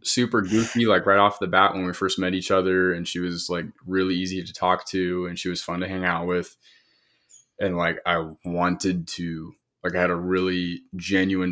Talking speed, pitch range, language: 215 wpm, 85-95 Hz, English